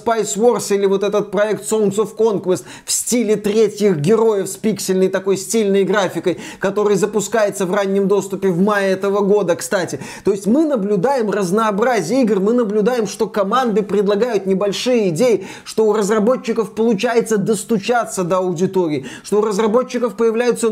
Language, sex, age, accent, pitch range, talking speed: Russian, male, 20-39, native, 200-235 Hz, 150 wpm